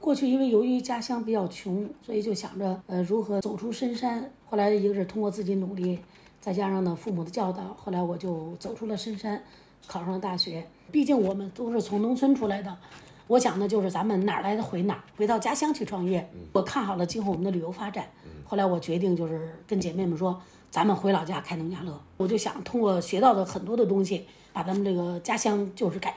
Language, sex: Chinese, female